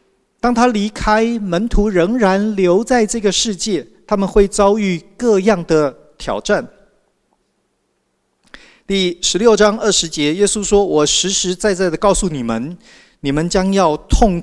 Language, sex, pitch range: Chinese, male, 155-210 Hz